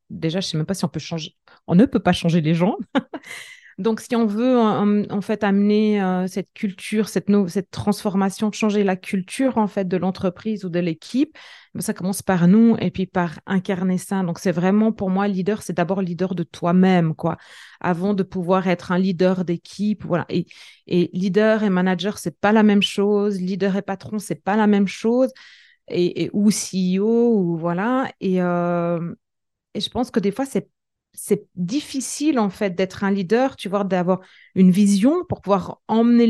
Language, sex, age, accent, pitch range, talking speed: French, female, 30-49, French, 185-215 Hz, 200 wpm